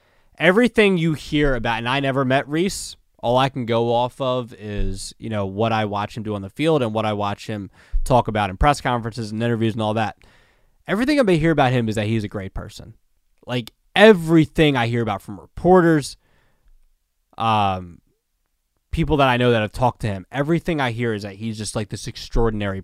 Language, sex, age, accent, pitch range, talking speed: English, male, 20-39, American, 105-130 Hz, 210 wpm